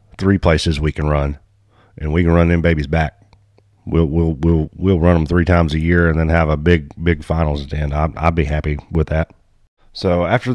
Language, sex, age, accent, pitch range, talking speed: English, male, 30-49, American, 80-100 Hz, 230 wpm